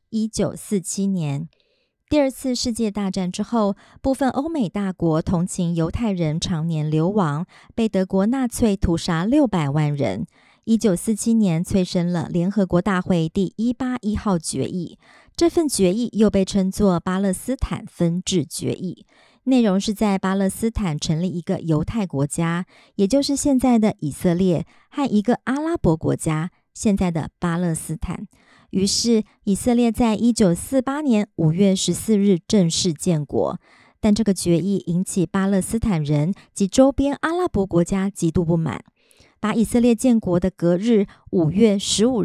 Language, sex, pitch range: Chinese, male, 175-225 Hz